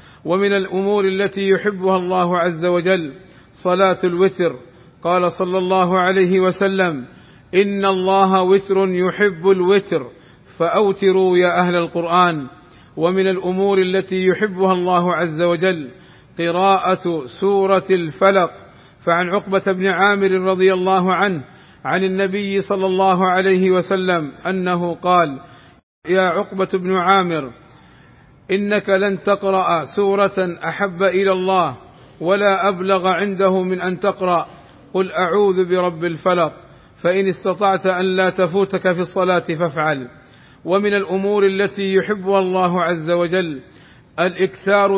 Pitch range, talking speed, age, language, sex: 175-195 Hz, 115 wpm, 50-69, Arabic, male